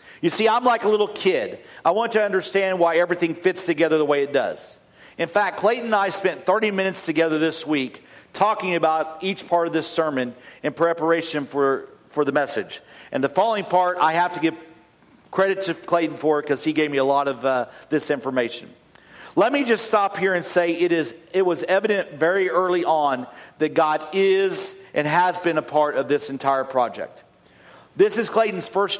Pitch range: 150-190 Hz